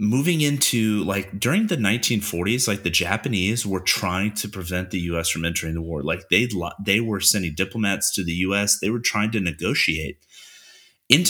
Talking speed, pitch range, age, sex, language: 180 wpm, 85-105 Hz, 30-49, male, English